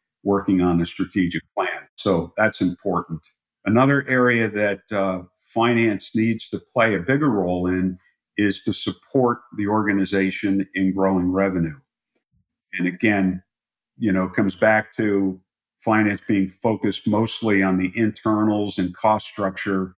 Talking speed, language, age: 140 wpm, English, 50-69